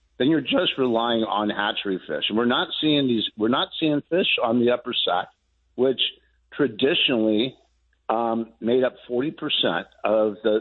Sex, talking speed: male, 165 wpm